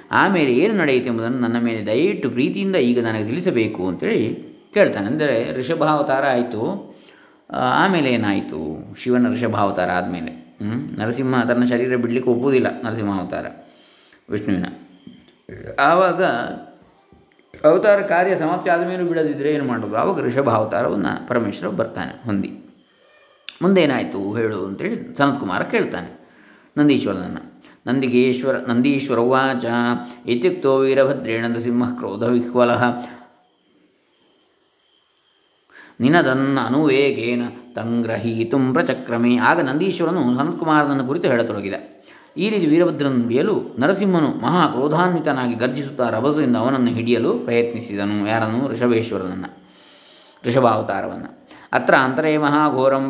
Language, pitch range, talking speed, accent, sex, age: Kannada, 115-135 Hz, 95 wpm, native, male, 20-39